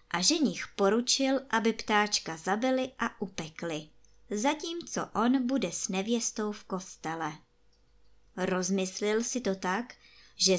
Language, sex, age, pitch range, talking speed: Czech, male, 20-39, 185-250 Hz, 115 wpm